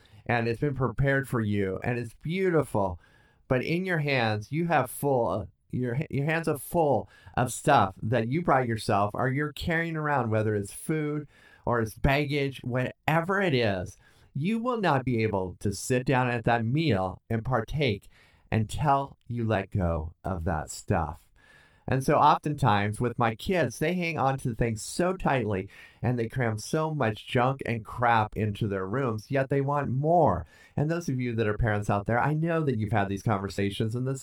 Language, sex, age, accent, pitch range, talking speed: English, male, 30-49, American, 105-145 Hz, 185 wpm